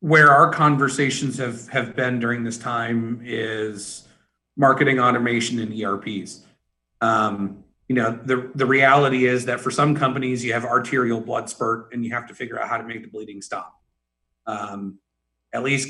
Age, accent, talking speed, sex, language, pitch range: 40-59, American, 170 wpm, male, English, 110-125 Hz